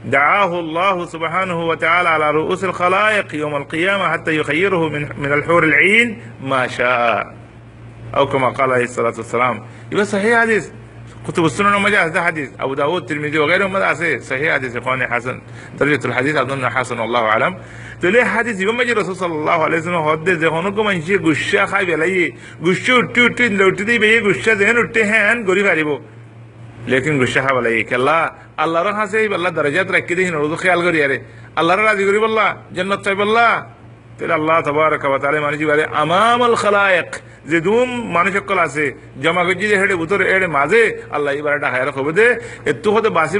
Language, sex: Arabic, male